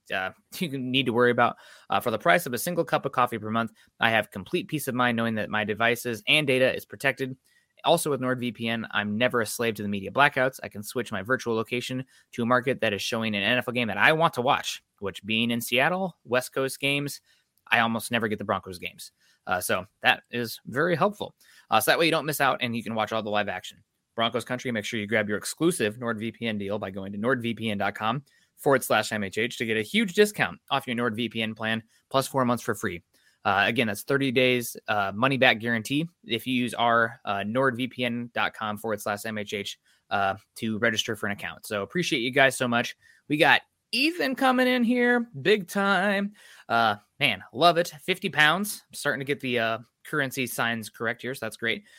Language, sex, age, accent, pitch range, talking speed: English, male, 20-39, American, 110-135 Hz, 215 wpm